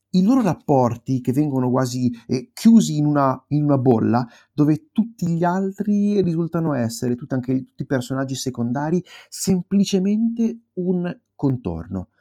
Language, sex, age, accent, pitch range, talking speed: Italian, male, 30-49, native, 110-140 Hz, 140 wpm